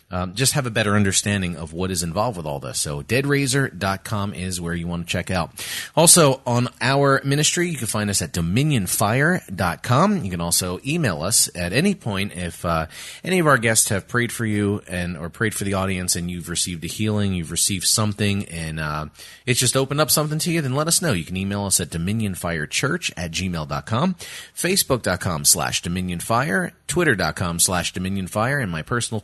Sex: male